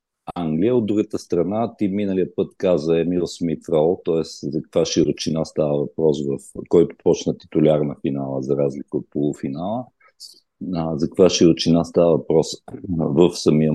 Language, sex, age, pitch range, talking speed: Bulgarian, male, 50-69, 75-95 Hz, 140 wpm